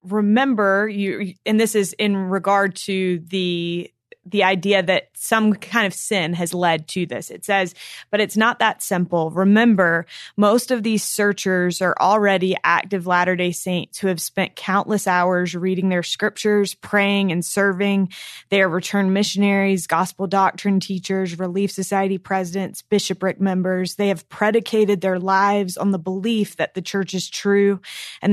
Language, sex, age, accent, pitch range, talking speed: English, female, 20-39, American, 180-200 Hz, 160 wpm